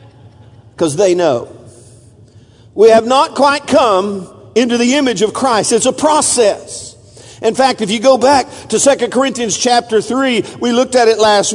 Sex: male